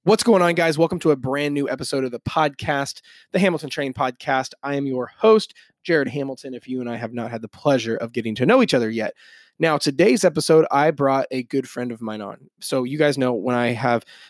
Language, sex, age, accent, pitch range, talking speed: English, male, 20-39, American, 120-145 Hz, 240 wpm